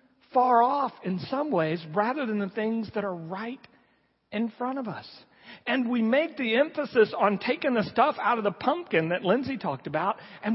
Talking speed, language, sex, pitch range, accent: 195 wpm, English, male, 190-260 Hz, American